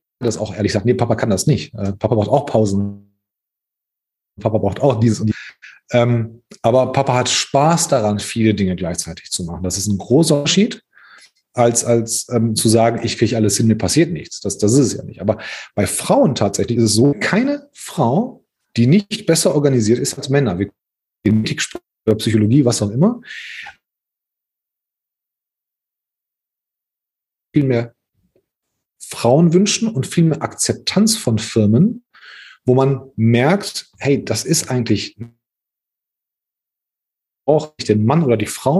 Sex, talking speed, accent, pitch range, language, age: male, 155 wpm, German, 110-140 Hz, German, 30-49